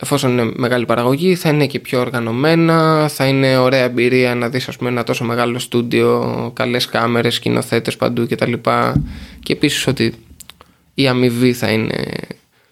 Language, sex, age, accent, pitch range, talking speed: Greek, male, 20-39, Spanish, 125-165 Hz, 165 wpm